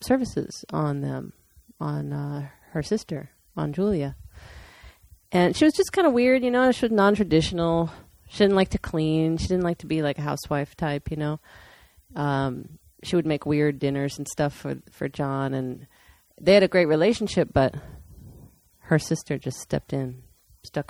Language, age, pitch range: English, 40-59, 135-170 Hz